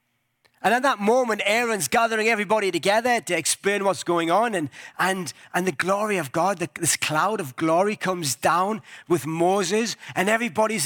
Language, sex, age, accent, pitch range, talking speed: English, male, 30-49, British, 145-200 Hz, 165 wpm